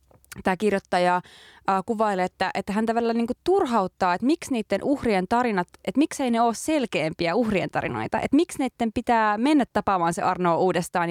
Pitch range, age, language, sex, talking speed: 170-220 Hz, 20-39, Finnish, female, 165 wpm